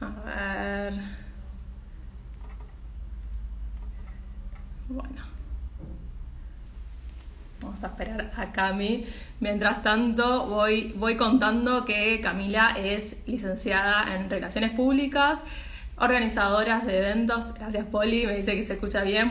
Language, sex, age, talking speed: Spanish, female, 20-39, 95 wpm